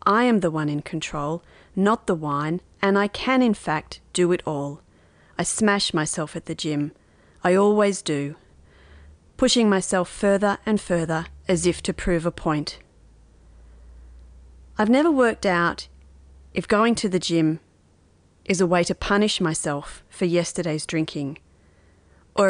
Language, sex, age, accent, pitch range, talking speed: English, female, 30-49, Australian, 150-195 Hz, 150 wpm